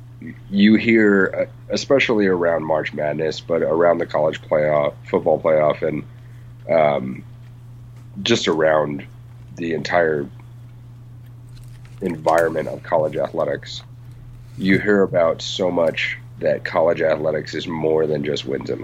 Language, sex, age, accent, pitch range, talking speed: English, male, 30-49, American, 80-120 Hz, 120 wpm